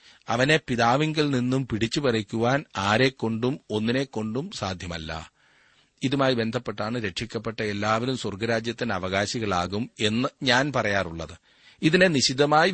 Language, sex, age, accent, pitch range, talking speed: Malayalam, male, 40-59, native, 110-140 Hz, 95 wpm